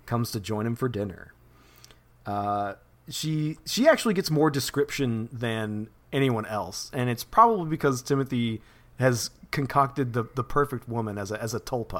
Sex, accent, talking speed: male, American, 160 wpm